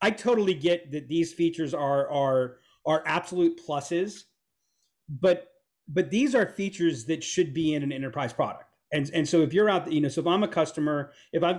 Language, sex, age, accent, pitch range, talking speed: English, male, 40-59, American, 145-180 Hz, 200 wpm